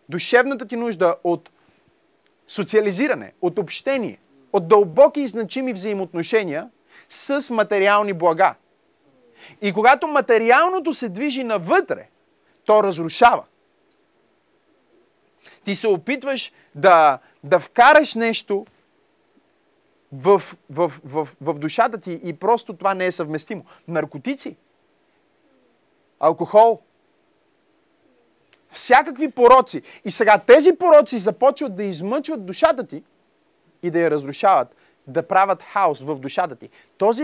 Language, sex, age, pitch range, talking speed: Bulgarian, male, 30-49, 185-270 Hz, 105 wpm